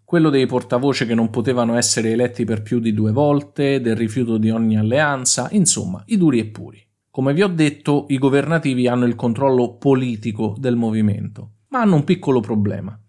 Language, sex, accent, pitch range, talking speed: Italian, male, native, 110-165 Hz, 185 wpm